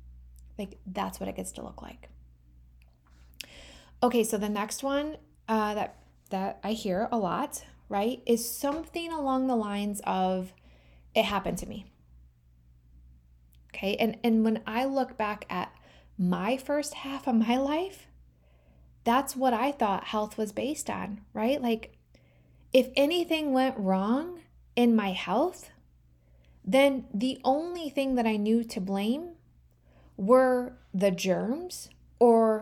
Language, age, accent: English, 20-39, American